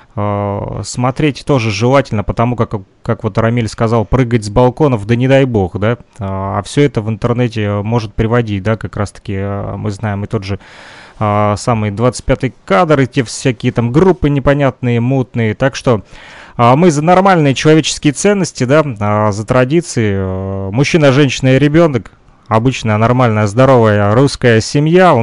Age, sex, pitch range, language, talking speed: 30-49, male, 110-135 Hz, Russian, 150 wpm